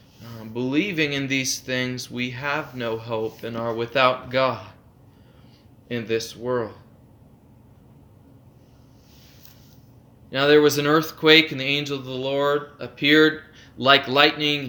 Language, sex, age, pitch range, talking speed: English, male, 20-39, 125-155 Hz, 120 wpm